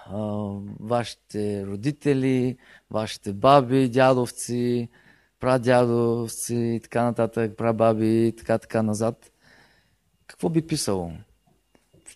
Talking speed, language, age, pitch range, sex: 90 wpm, Bulgarian, 20-39, 110-135 Hz, male